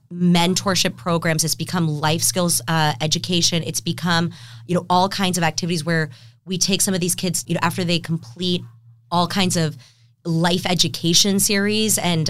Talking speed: 170 wpm